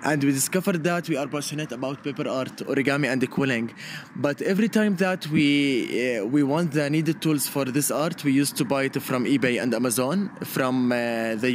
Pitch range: 135-160 Hz